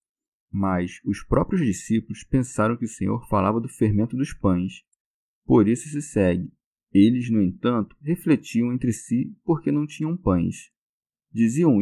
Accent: Brazilian